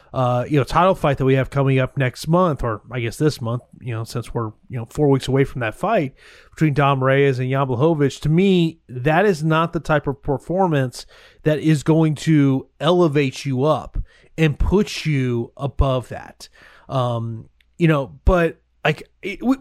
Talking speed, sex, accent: 190 wpm, male, American